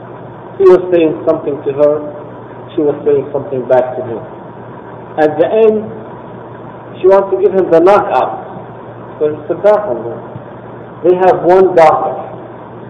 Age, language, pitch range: 50-69, English, 160-215 Hz